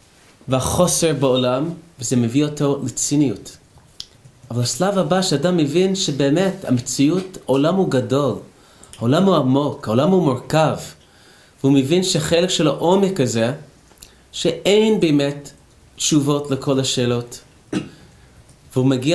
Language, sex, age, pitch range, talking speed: Hebrew, male, 30-49, 125-155 Hz, 110 wpm